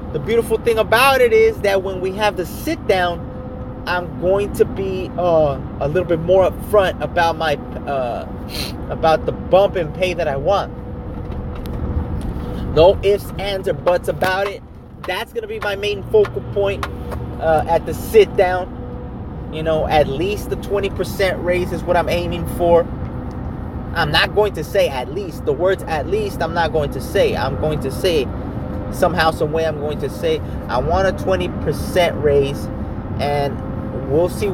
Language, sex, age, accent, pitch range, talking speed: English, male, 30-49, American, 145-190 Hz, 170 wpm